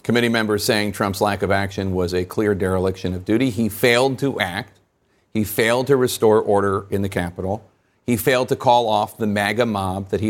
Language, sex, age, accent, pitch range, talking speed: English, male, 40-59, American, 105-160 Hz, 205 wpm